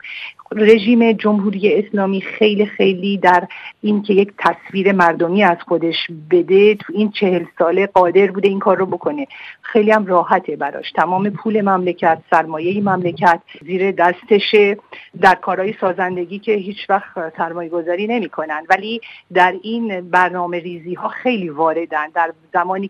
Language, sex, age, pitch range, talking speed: Persian, female, 50-69, 175-205 Hz, 135 wpm